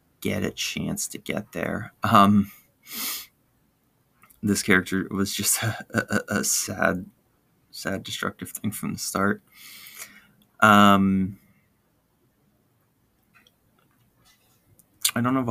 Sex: male